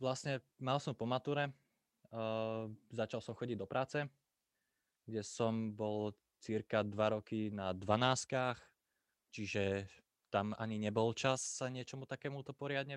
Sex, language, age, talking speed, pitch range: male, Slovak, 20-39, 130 wpm, 105-125 Hz